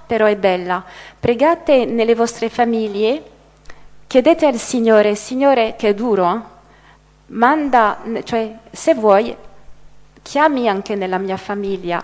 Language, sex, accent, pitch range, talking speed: Italian, female, native, 205-255 Hz, 120 wpm